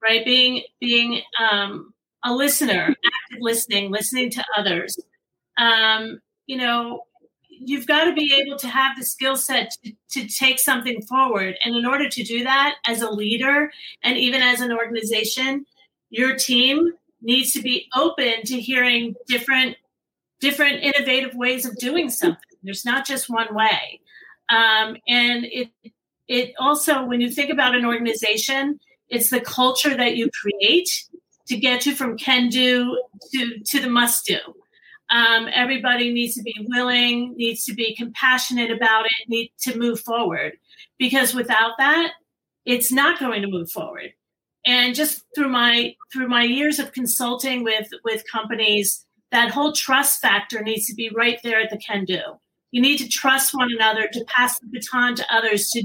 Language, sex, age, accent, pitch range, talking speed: English, female, 40-59, American, 230-265 Hz, 165 wpm